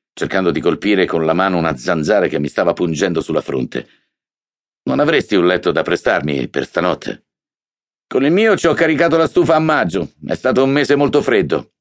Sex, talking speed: male, 195 wpm